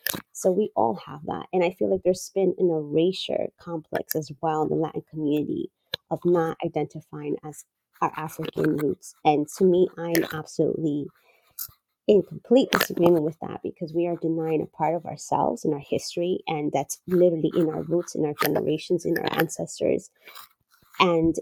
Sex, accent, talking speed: female, American, 170 wpm